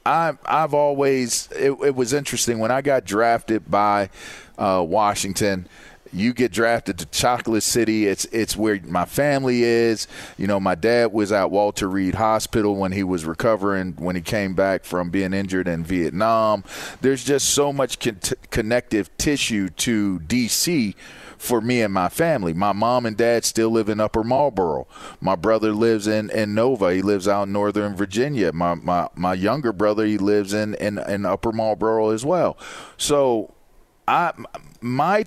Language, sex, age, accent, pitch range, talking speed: English, male, 30-49, American, 95-120 Hz, 170 wpm